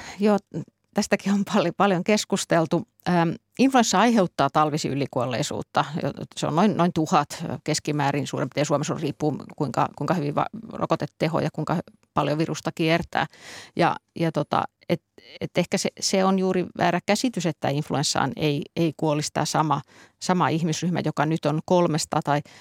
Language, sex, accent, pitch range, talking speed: Finnish, female, native, 150-185 Hz, 135 wpm